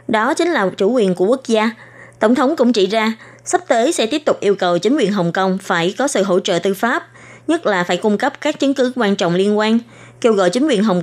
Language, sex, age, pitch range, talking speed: Vietnamese, female, 20-39, 195-255 Hz, 260 wpm